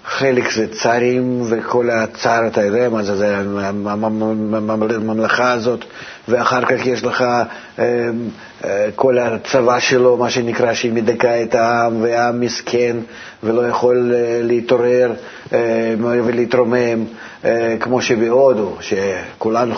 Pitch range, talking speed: 110-125 Hz, 100 wpm